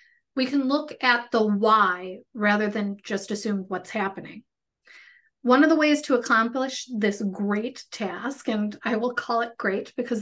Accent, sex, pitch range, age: American, female, 210-245 Hz, 30-49